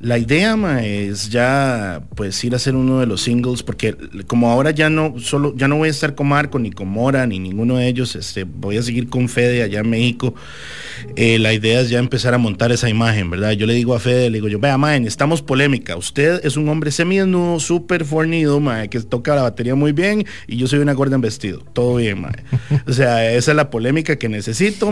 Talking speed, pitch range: 235 wpm, 115-145 Hz